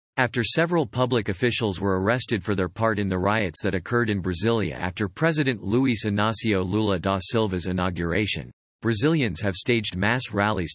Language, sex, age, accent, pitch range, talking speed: English, male, 40-59, American, 95-120 Hz, 160 wpm